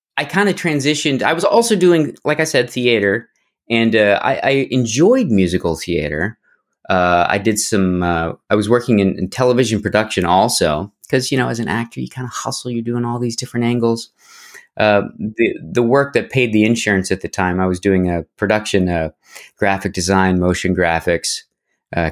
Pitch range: 95-130 Hz